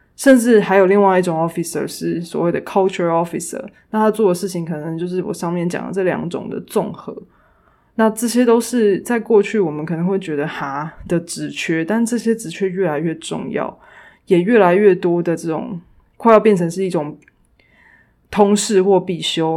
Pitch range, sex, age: 165-210 Hz, female, 20-39